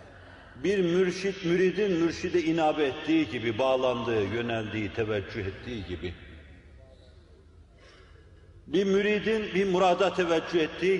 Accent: native